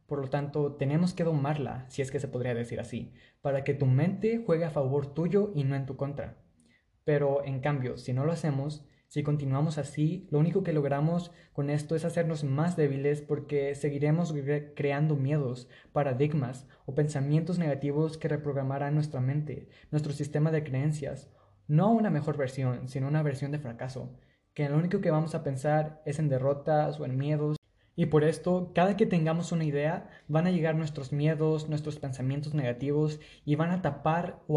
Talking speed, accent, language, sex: 185 wpm, Mexican, Spanish, male